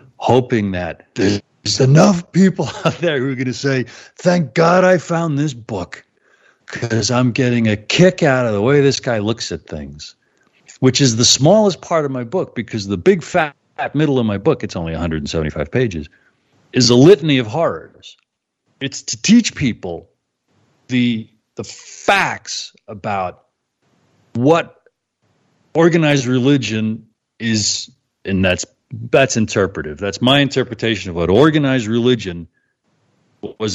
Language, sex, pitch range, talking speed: English, male, 100-135 Hz, 145 wpm